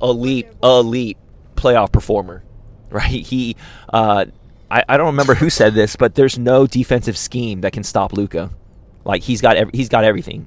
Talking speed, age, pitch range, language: 170 wpm, 20-39, 95-120 Hz, English